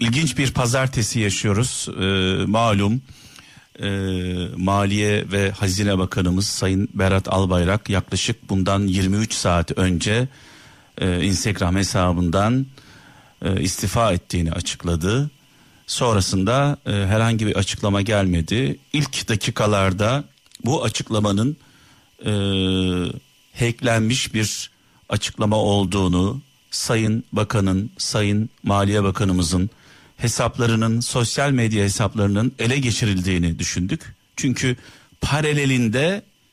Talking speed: 90 wpm